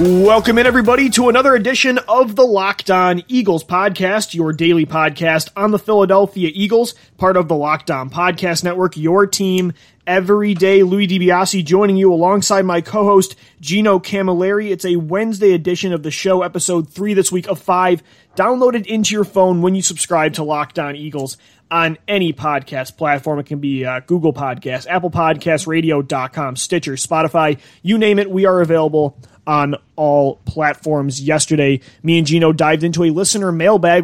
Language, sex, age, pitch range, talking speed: English, male, 30-49, 150-190 Hz, 165 wpm